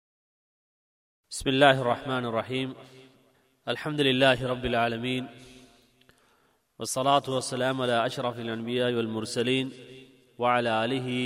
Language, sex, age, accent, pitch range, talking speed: Tamil, male, 30-49, native, 120-140 Hz, 85 wpm